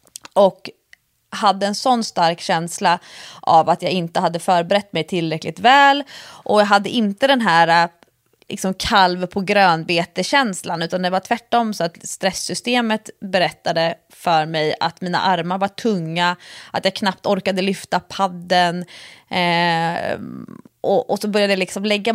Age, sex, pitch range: 30-49, female, 175-220 Hz